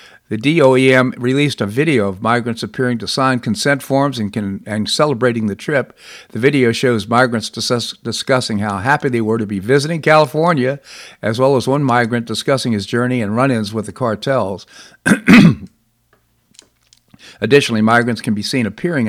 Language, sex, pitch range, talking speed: English, male, 110-135 Hz, 160 wpm